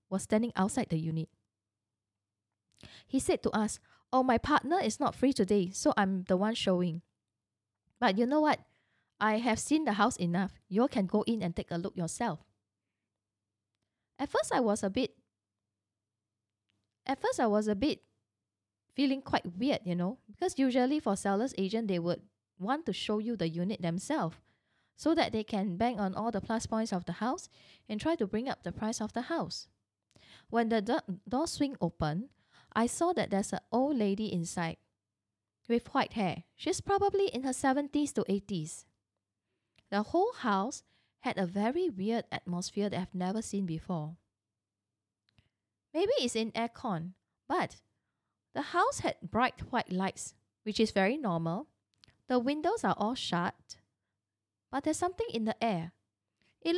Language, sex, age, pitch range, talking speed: English, female, 10-29, 160-245 Hz, 165 wpm